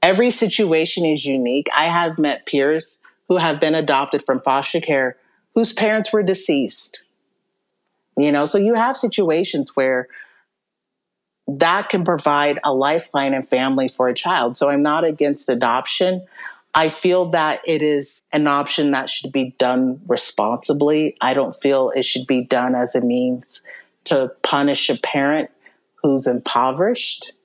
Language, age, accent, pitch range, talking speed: English, 40-59, American, 130-160 Hz, 150 wpm